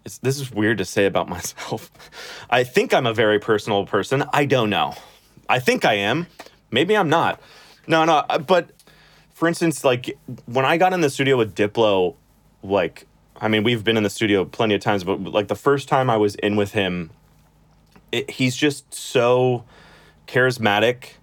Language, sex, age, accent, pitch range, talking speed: English, male, 30-49, American, 100-125 Hz, 180 wpm